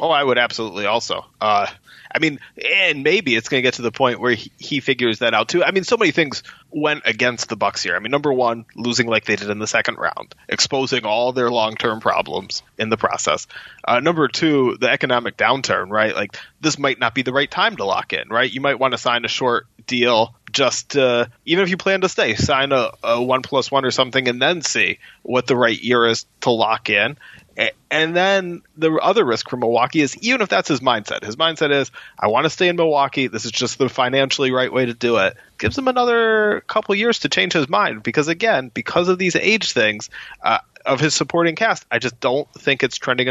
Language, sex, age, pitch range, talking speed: English, male, 20-39, 120-165 Hz, 230 wpm